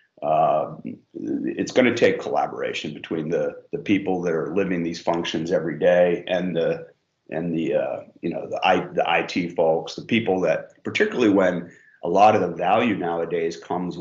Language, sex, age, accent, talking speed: English, male, 40-59, American, 175 wpm